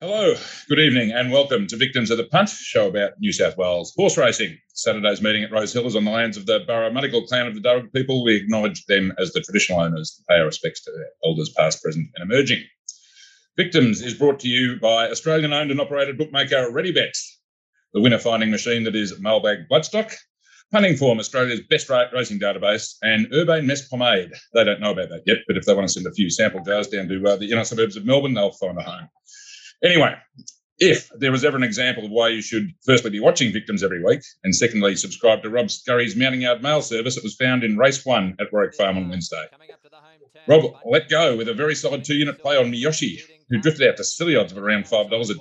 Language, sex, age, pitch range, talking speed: English, male, 40-59, 110-150 Hz, 220 wpm